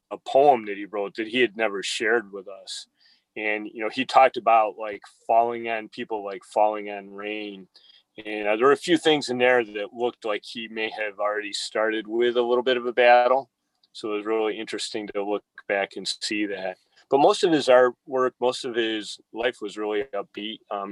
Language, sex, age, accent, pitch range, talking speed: English, male, 30-49, American, 105-120 Hz, 210 wpm